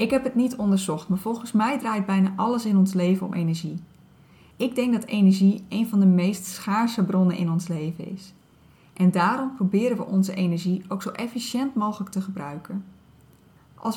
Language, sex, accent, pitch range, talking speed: Dutch, female, Dutch, 180-220 Hz, 185 wpm